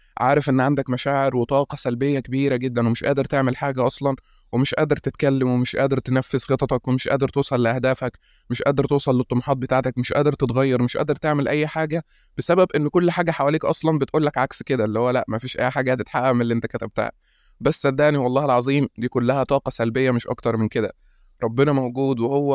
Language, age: Arabic, 20-39